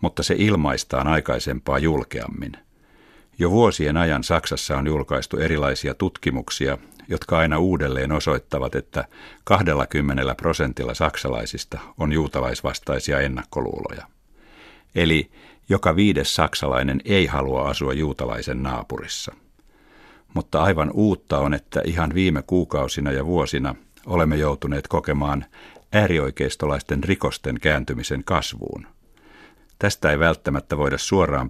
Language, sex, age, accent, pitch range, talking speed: Finnish, male, 50-69, native, 70-85 Hz, 105 wpm